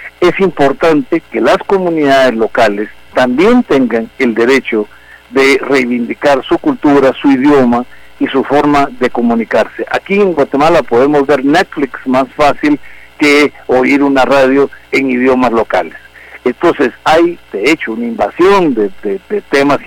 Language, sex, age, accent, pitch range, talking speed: Spanish, male, 50-69, Mexican, 125-170 Hz, 140 wpm